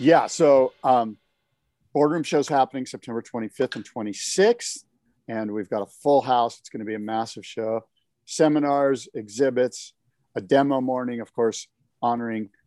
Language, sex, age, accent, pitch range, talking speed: English, male, 40-59, American, 110-135 Hz, 145 wpm